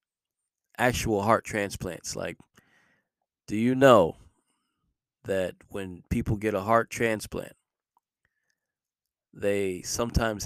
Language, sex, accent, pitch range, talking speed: English, male, American, 95-110 Hz, 90 wpm